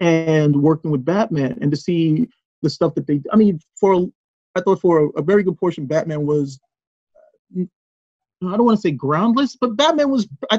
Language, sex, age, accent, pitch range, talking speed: English, male, 30-49, American, 140-170 Hz, 185 wpm